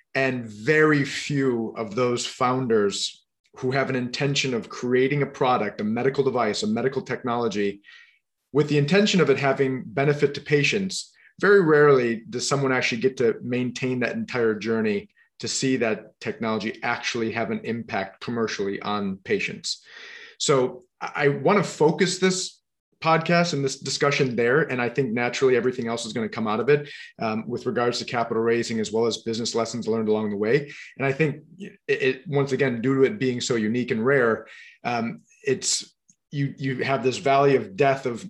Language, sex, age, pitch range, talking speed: English, male, 30-49, 120-145 Hz, 180 wpm